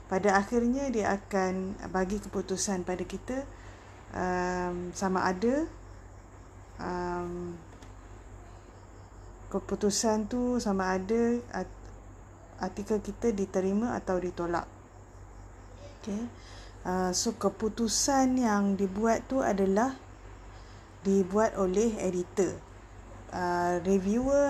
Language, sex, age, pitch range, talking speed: Malay, female, 20-39, 120-200 Hz, 85 wpm